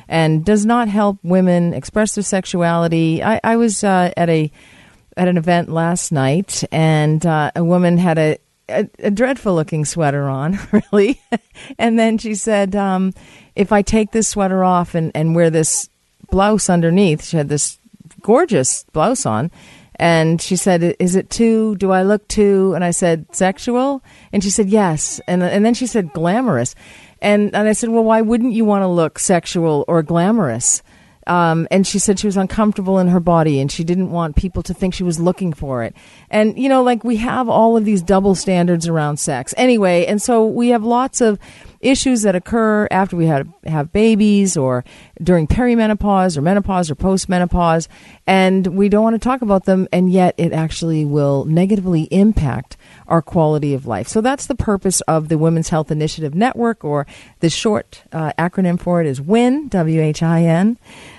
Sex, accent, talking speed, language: female, American, 185 wpm, English